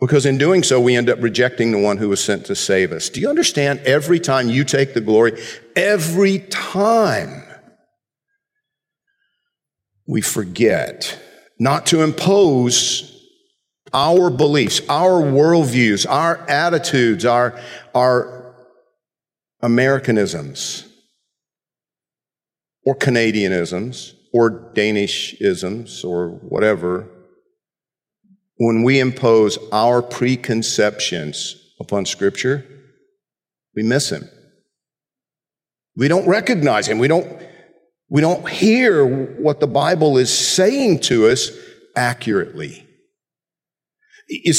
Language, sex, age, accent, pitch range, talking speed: English, male, 50-69, American, 120-180 Hz, 100 wpm